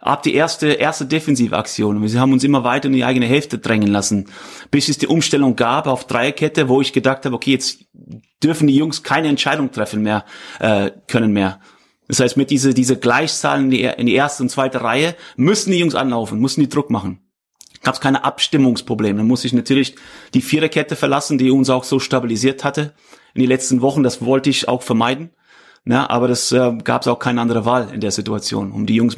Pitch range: 120-140 Hz